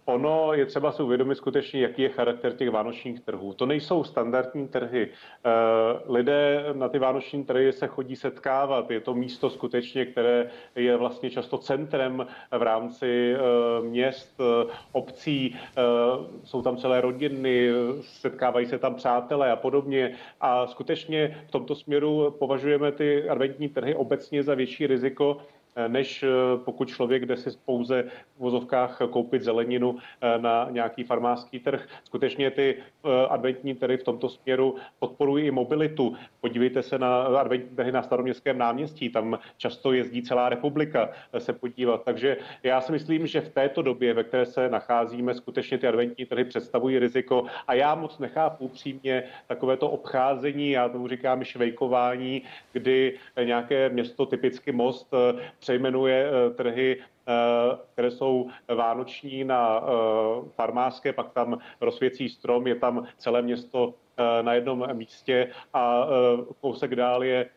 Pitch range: 120-135 Hz